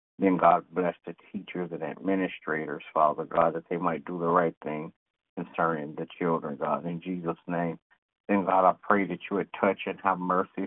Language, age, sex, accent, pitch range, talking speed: English, 60-79, male, American, 85-95 Hz, 190 wpm